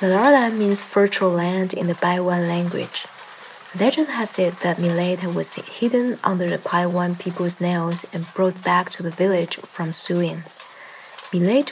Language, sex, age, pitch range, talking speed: English, female, 20-39, 175-200 Hz, 150 wpm